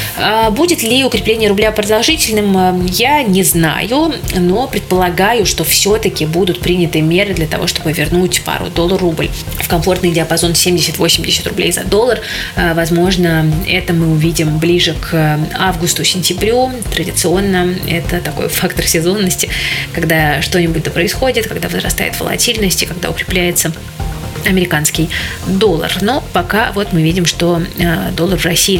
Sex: female